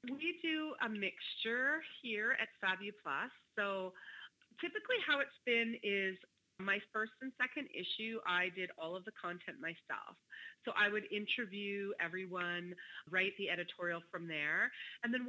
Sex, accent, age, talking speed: female, American, 30-49, 150 wpm